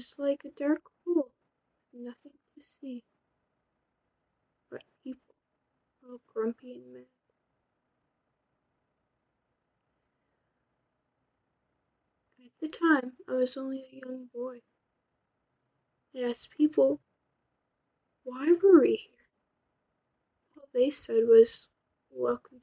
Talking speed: 90 wpm